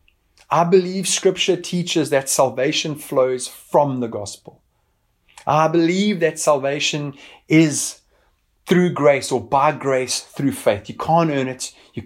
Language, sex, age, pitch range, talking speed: English, male, 30-49, 115-155 Hz, 135 wpm